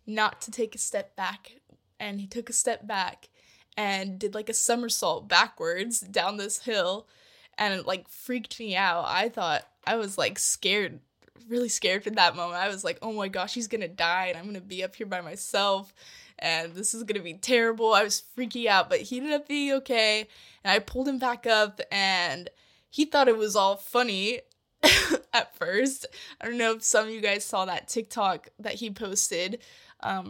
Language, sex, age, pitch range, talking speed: English, female, 10-29, 195-250 Hz, 200 wpm